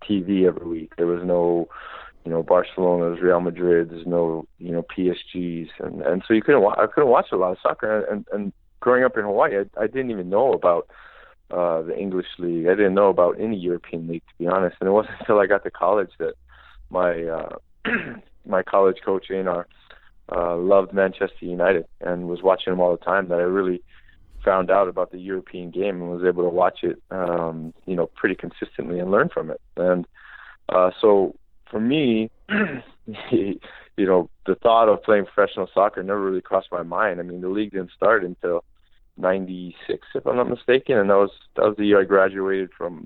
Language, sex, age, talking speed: English, male, 20-39, 205 wpm